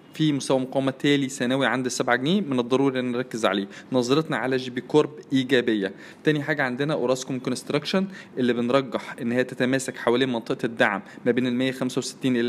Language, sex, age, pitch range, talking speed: Arabic, male, 20-39, 125-145 Hz, 170 wpm